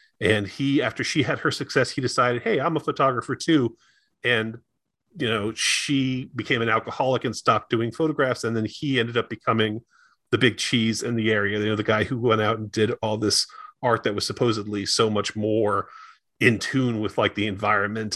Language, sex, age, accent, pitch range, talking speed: English, male, 30-49, American, 105-125 Hz, 200 wpm